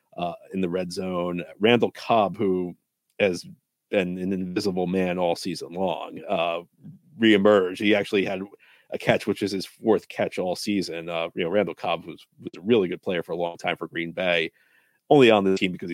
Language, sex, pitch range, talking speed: English, male, 90-100 Hz, 200 wpm